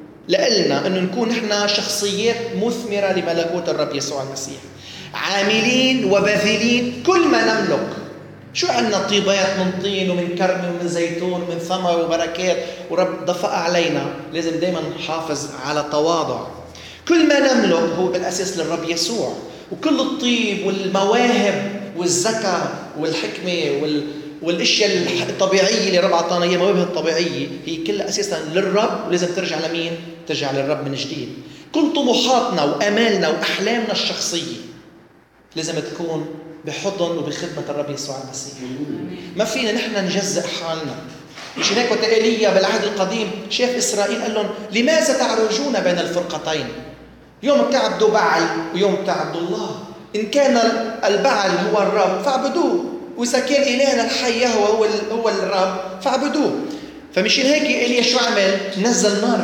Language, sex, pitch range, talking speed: Arabic, male, 170-225 Hz, 125 wpm